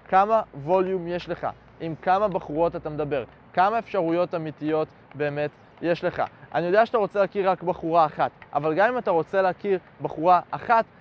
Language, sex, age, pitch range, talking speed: Hebrew, male, 20-39, 160-210 Hz, 170 wpm